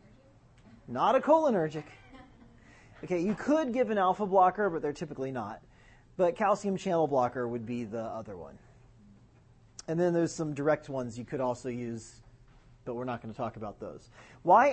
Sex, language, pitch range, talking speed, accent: male, English, 120-185 Hz, 170 wpm, American